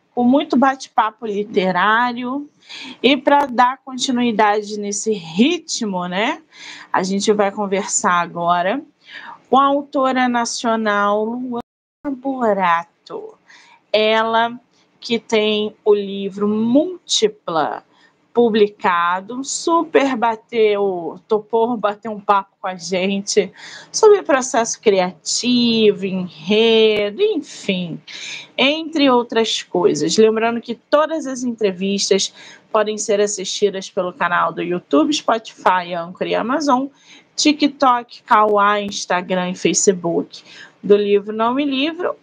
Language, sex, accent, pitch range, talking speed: Portuguese, female, Brazilian, 205-270 Hz, 105 wpm